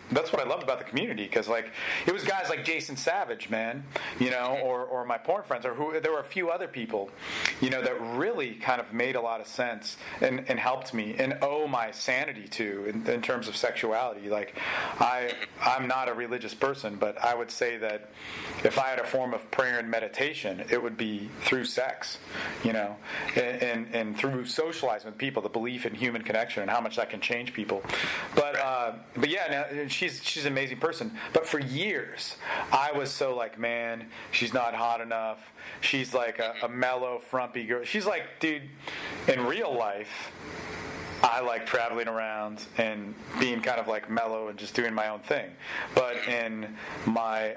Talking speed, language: 200 wpm, English